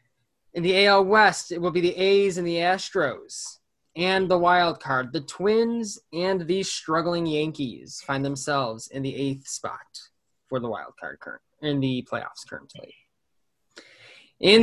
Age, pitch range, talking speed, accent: 20-39, 140-185 Hz, 150 wpm, American